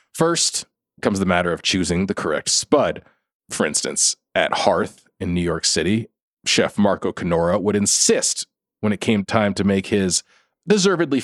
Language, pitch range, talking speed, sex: English, 100-160 Hz, 160 wpm, male